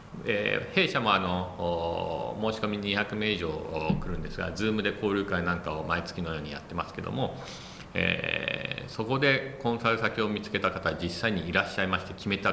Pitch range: 90-115 Hz